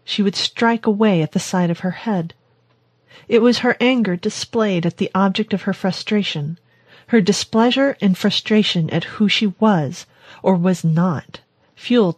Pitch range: 175-220 Hz